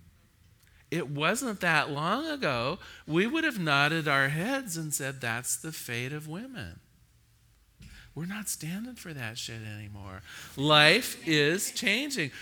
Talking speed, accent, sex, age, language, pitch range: 135 wpm, American, male, 40-59, English, 150-200 Hz